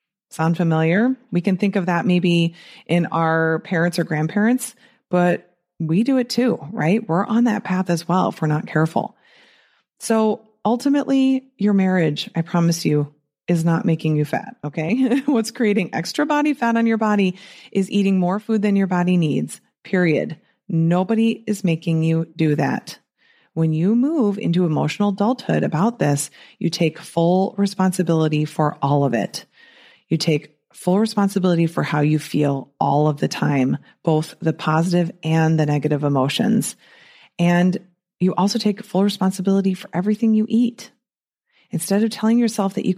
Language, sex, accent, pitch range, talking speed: English, female, American, 165-220 Hz, 160 wpm